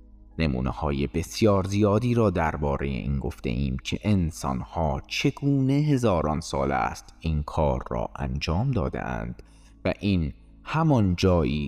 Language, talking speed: Persian, 130 wpm